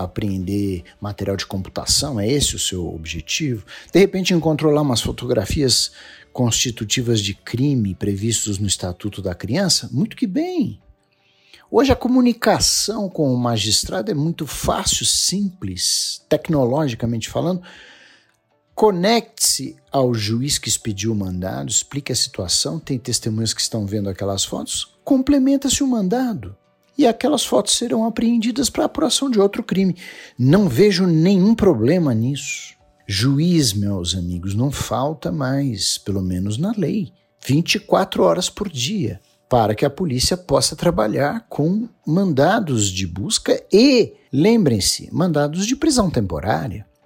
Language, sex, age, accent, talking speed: Portuguese, male, 50-69, Brazilian, 130 wpm